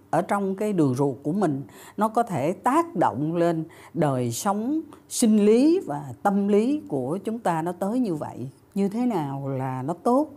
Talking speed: 190 wpm